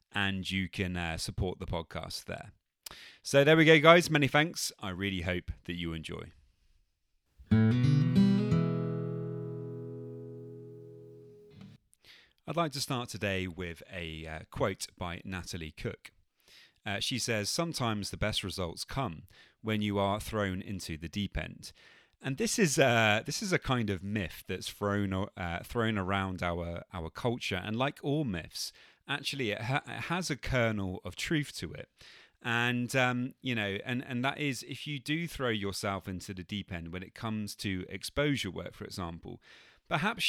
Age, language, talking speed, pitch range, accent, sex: 30-49, English, 160 wpm, 95-135 Hz, British, male